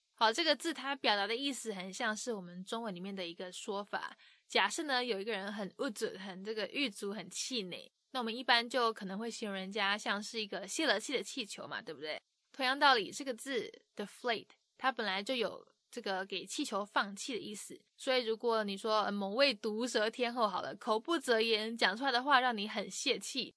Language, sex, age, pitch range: English, female, 20-39, 205-255 Hz